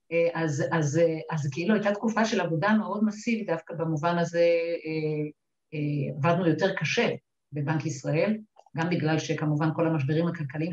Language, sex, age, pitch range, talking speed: Hebrew, female, 50-69, 150-180 Hz, 130 wpm